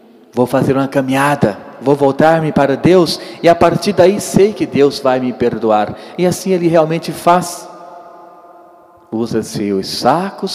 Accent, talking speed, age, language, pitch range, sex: Brazilian, 150 wpm, 40-59, Portuguese, 110-155 Hz, male